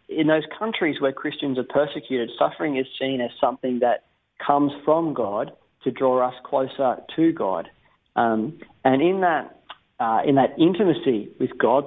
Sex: male